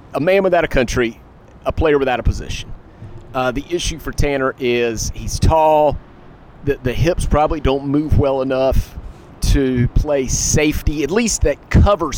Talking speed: 165 wpm